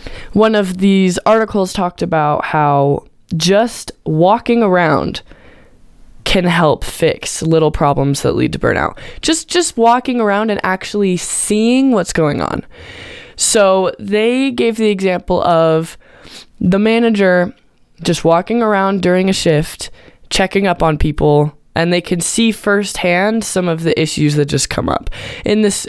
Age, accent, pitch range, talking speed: 20-39, American, 160-205 Hz, 145 wpm